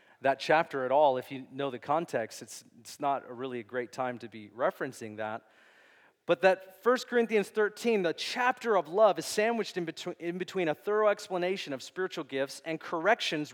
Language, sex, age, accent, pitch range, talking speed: English, male, 40-59, American, 165-225 Hz, 195 wpm